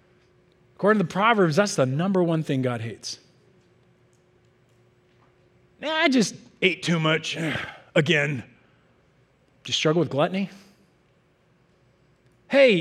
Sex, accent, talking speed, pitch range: male, American, 110 wpm, 140-230 Hz